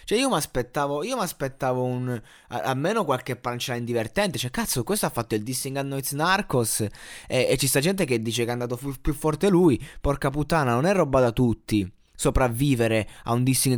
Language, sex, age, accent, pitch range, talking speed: Italian, male, 20-39, native, 120-160 Hz, 205 wpm